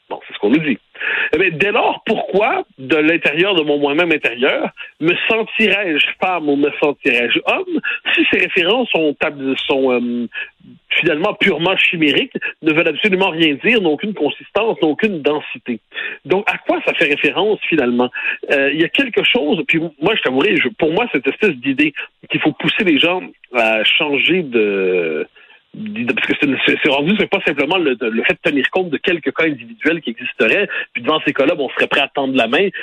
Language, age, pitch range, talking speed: French, 60-79, 140-210 Hz, 190 wpm